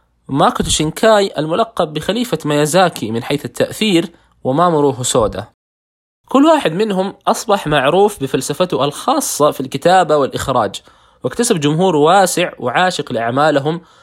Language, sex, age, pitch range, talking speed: Arabic, male, 20-39, 130-185 Hz, 110 wpm